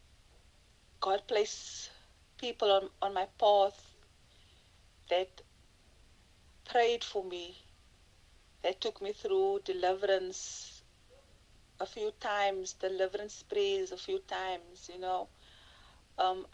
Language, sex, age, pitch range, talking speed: English, female, 40-59, 180-245 Hz, 100 wpm